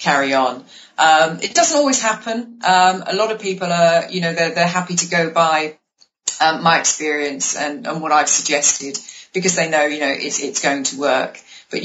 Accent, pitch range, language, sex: British, 145-180 Hz, English, female